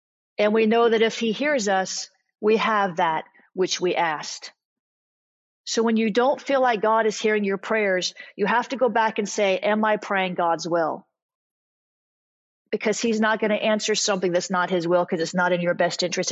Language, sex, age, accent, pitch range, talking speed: English, female, 40-59, American, 185-230 Hz, 200 wpm